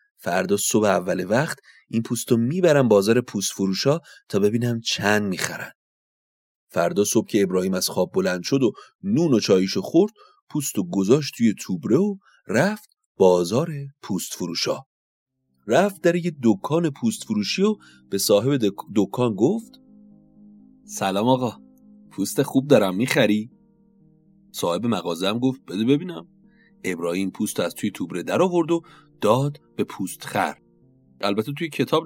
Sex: male